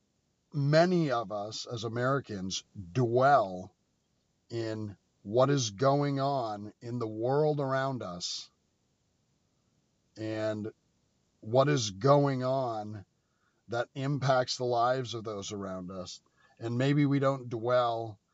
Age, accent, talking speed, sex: 50-69, American, 110 wpm, male